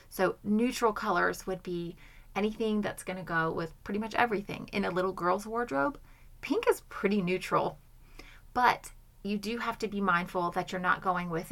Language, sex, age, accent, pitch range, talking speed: English, female, 30-49, American, 170-200 Hz, 180 wpm